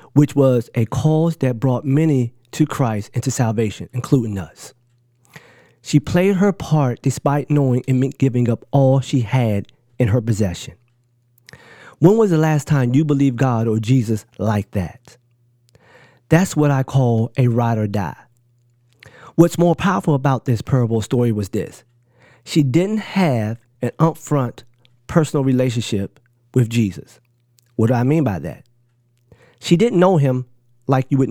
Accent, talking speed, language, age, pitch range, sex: American, 155 wpm, English, 40-59, 120-145 Hz, male